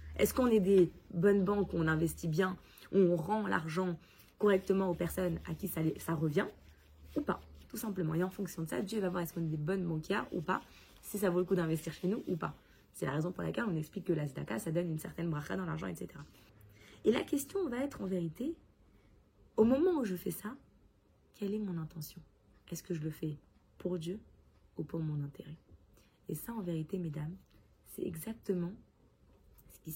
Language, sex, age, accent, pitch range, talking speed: French, female, 20-39, French, 160-205 Hz, 210 wpm